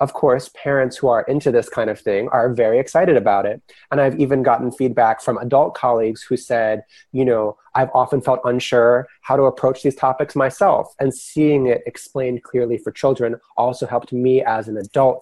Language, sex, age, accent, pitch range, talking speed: English, male, 20-39, American, 115-140 Hz, 195 wpm